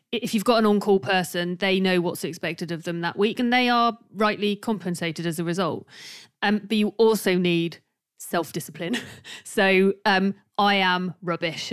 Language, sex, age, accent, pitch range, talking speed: English, female, 40-59, British, 175-215 Hz, 170 wpm